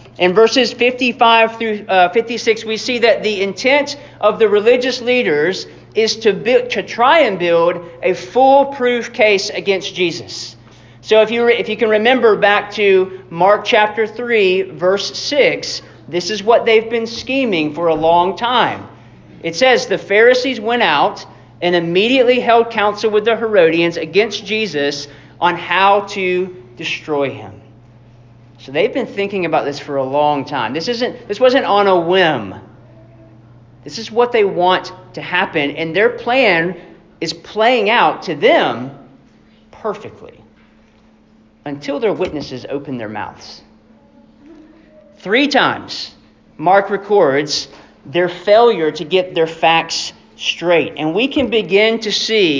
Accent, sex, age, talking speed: American, male, 40-59, 145 wpm